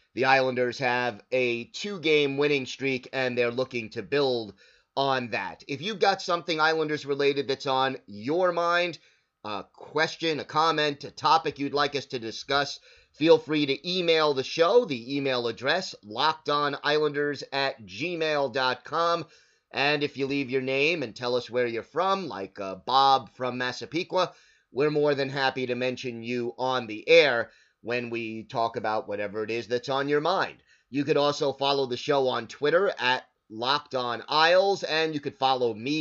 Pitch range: 125-155 Hz